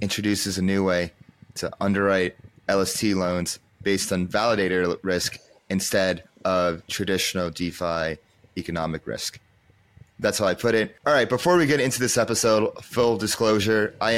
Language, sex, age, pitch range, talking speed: English, male, 30-49, 100-135 Hz, 145 wpm